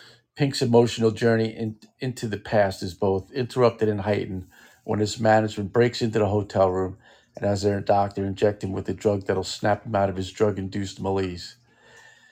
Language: English